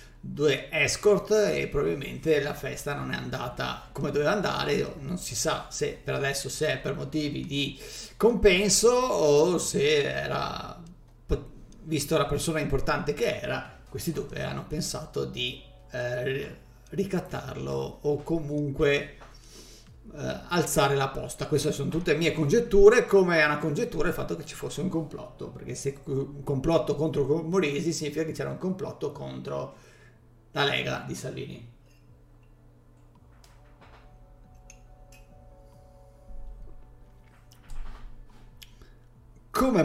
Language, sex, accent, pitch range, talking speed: Italian, male, native, 125-165 Hz, 120 wpm